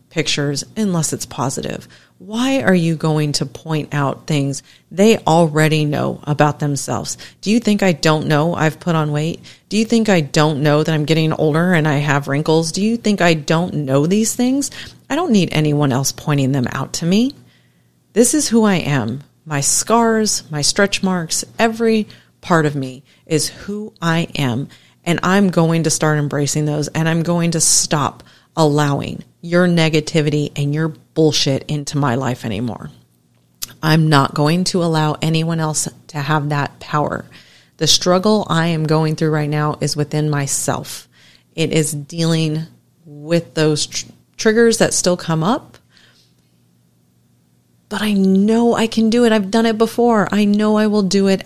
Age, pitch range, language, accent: 40-59, 145-190 Hz, English, American